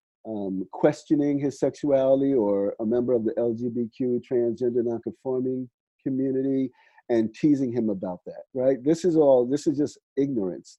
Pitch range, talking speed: 120-170 Hz, 145 wpm